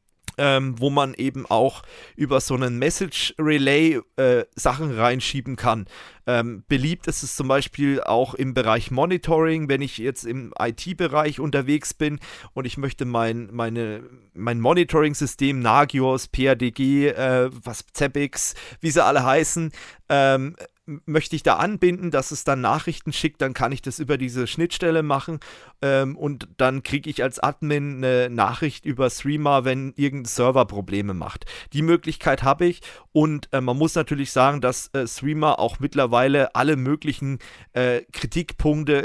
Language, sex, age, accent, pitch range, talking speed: German, male, 40-59, German, 125-150 Hz, 150 wpm